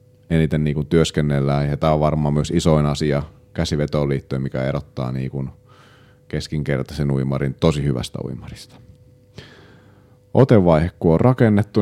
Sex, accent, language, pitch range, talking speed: male, native, Finnish, 75-100 Hz, 110 wpm